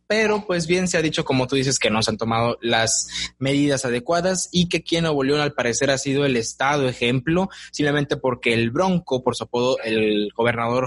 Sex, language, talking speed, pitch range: male, Spanish, 205 wpm, 125-170 Hz